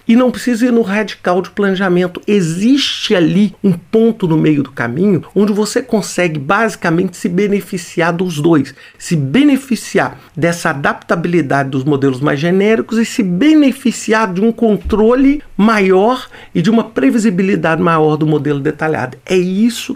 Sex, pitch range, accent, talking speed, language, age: male, 155-215 Hz, Brazilian, 145 wpm, Portuguese, 50-69